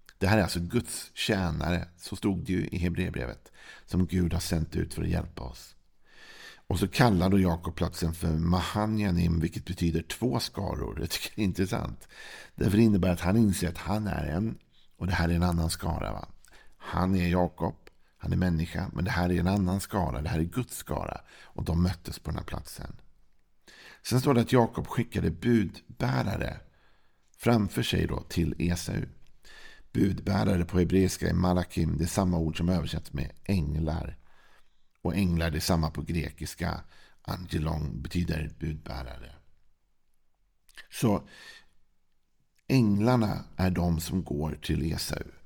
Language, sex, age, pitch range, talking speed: Swedish, male, 50-69, 80-100 Hz, 160 wpm